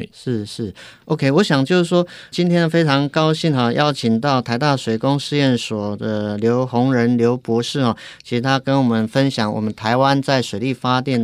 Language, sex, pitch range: Chinese, male, 115-150 Hz